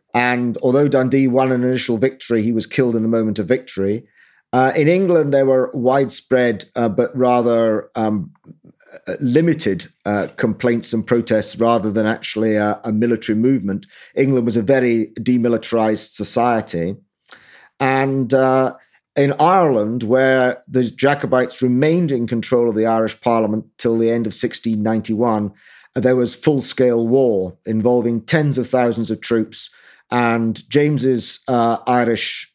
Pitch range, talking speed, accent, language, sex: 110-130 Hz, 140 wpm, British, English, male